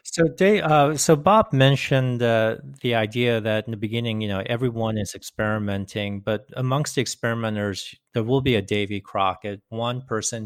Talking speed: 170 wpm